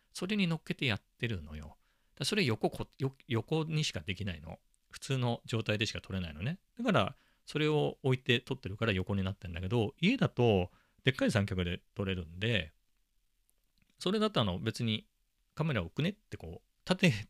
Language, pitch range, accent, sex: Japanese, 95-145 Hz, native, male